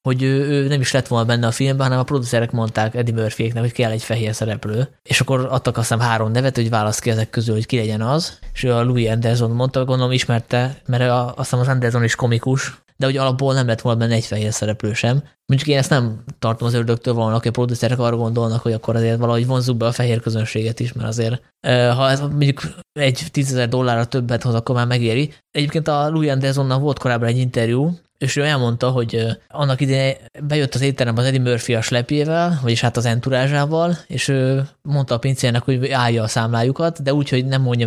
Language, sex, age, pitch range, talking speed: Hungarian, male, 20-39, 115-135 Hz, 220 wpm